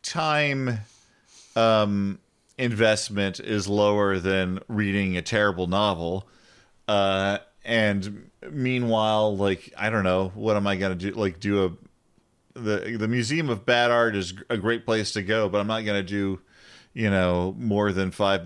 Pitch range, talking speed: 95-110 Hz, 155 wpm